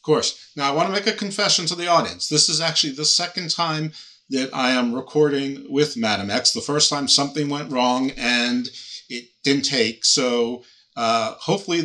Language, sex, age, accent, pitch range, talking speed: English, male, 50-69, American, 115-150 Hz, 195 wpm